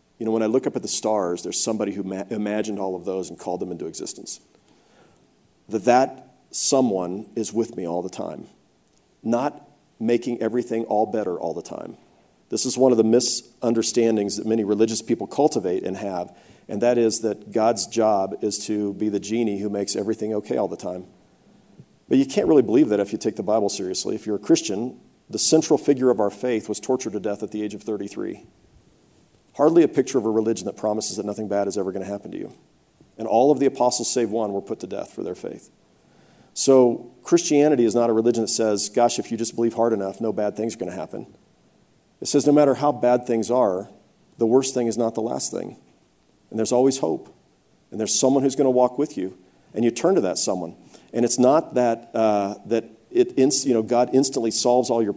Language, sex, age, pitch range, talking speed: English, male, 50-69, 105-125 Hz, 220 wpm